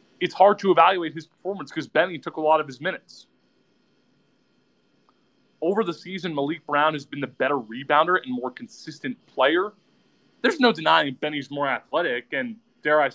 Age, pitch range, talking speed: 20-39, 145-185 Hz, 170 wpm